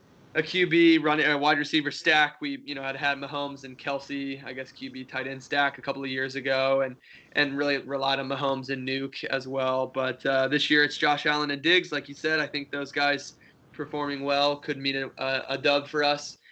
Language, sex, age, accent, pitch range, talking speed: English, male, 20-39, American, 130-150 Hz, 225 wpm